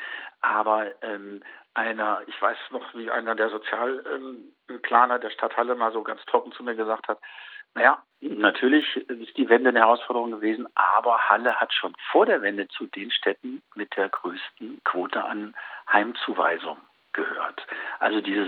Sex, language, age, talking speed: male, German, 50-69, 160 wpm